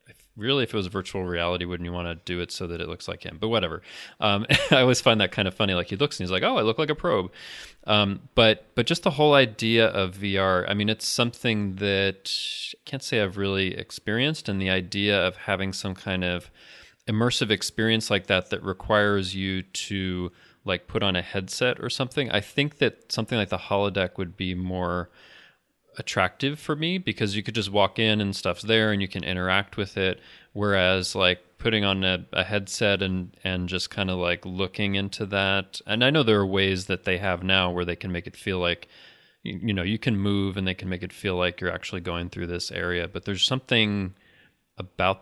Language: English